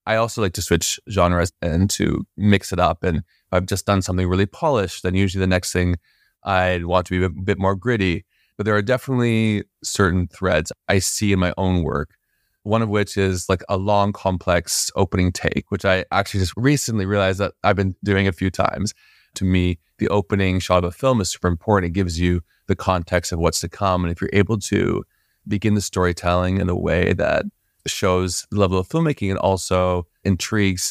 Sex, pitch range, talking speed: male, 90-100 Hz, 210 wpm